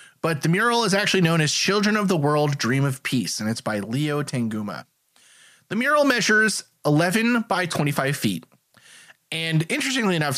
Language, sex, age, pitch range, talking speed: English, male, 20-39, 145-215 Hz, 170 wpm